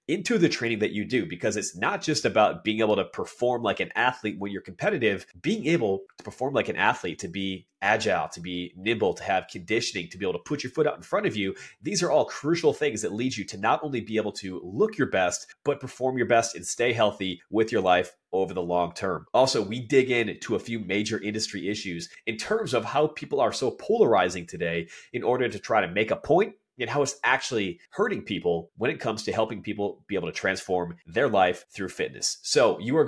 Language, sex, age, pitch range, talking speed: English, male, 30-49, 95-120 Hz, 235 wpm